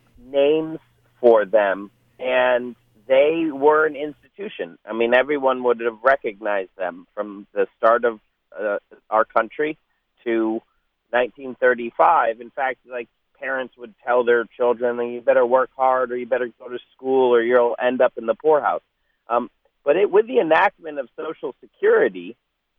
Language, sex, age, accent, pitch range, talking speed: English, male, 40-59, American, 120-155 Hz, 155 wpm